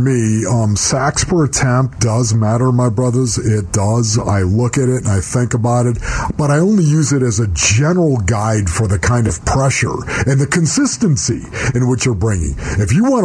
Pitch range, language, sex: 110-165 Hz, English, male